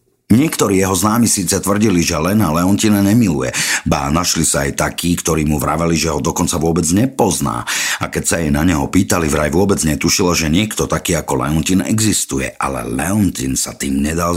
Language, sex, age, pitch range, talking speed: Slovak, male, 50-69, 75-100 Hz, 180 wpm